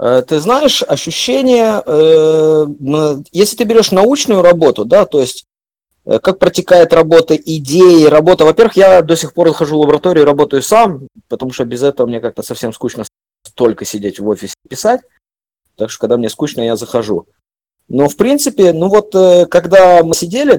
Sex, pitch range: male, 115-180 Hz